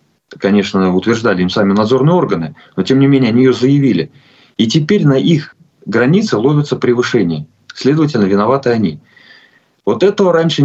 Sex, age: male, 30-49